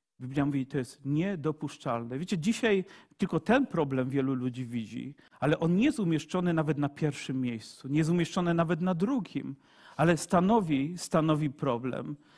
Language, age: Polish, 40-59